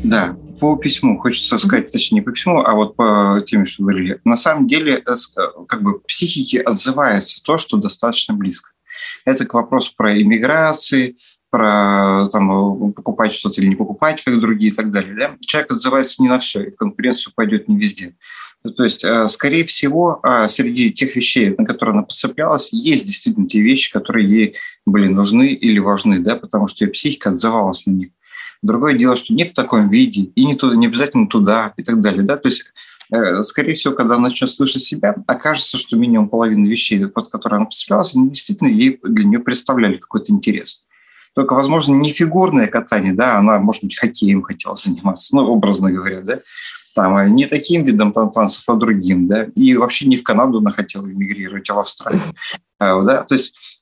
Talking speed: 180 wpm